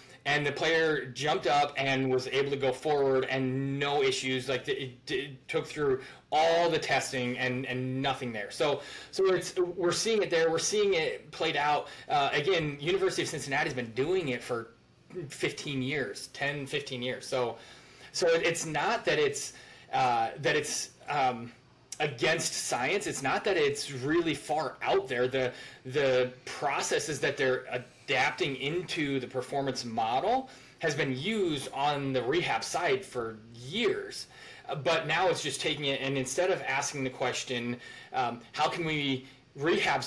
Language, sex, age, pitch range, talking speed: English, male, 20-39, 130-160 Hz, 165 wpm